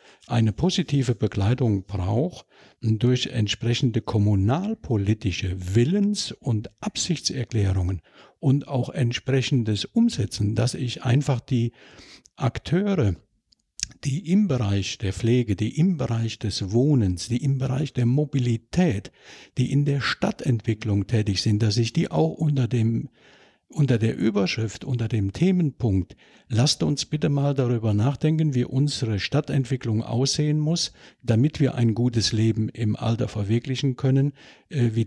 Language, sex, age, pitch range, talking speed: German, male, 50-69, 110-145 Hz, 125 wpm